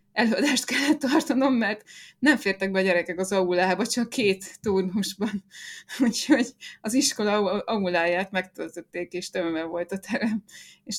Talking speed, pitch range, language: 135 wpm, 180-215 Hz, Hungarian